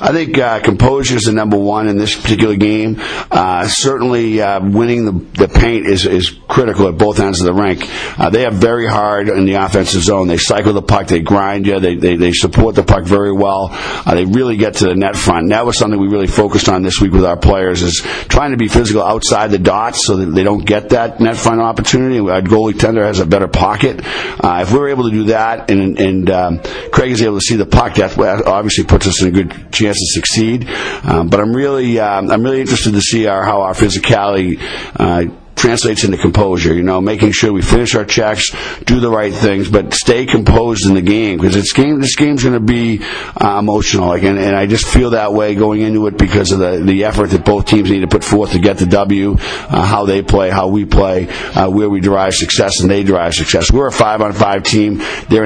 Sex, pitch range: male, 95-110 Hz